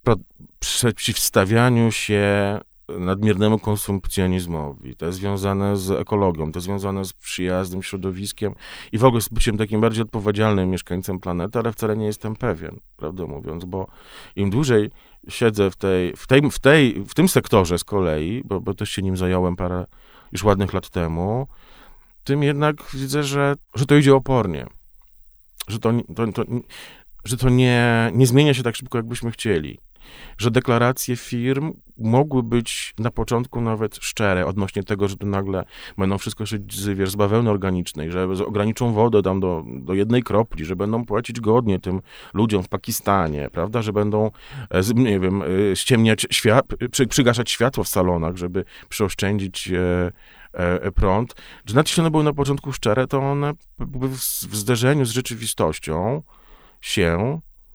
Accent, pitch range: native, 95-120 Hz